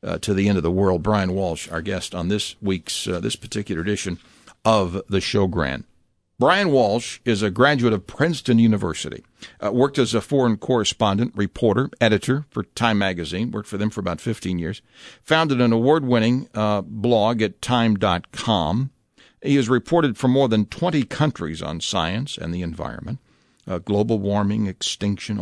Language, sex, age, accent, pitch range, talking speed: English, male, 60-79, American, 95-120 Hz, 170 wpm